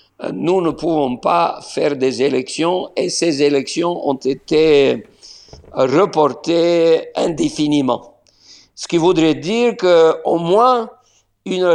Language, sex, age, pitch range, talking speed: French, male, 50-69, 150-195 Hz, 105 wpm